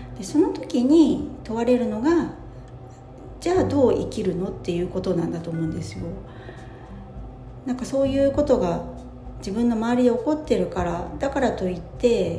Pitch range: 165-235 Hz